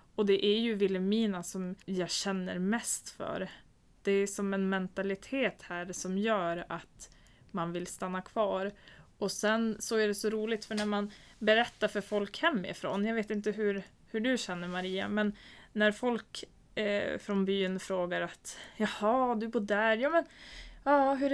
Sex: female